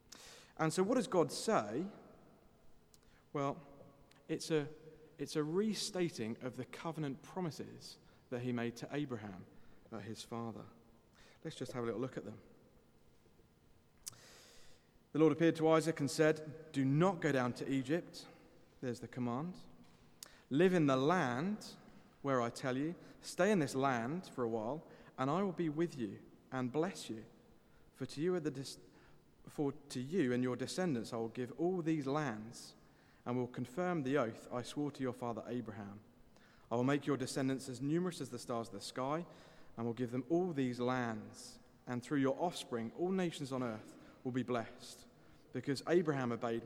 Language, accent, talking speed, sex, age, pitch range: English, British, 170 wpm, male, 40-59, 120-155 Hz